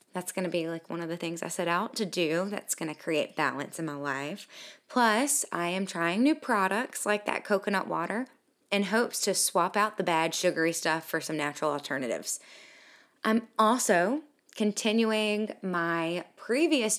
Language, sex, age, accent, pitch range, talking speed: English, female, 20-39, American, 175-245 Hz, 175 wpm